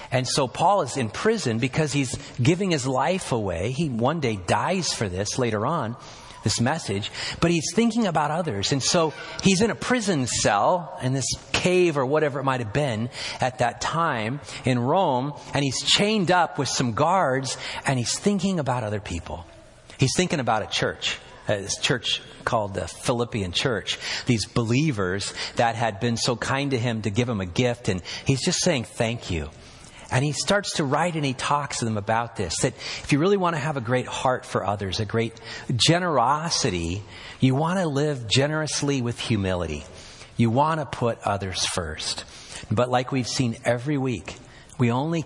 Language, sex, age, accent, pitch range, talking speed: English, male, 40-59, American, 110-145 Hz, 185 wpm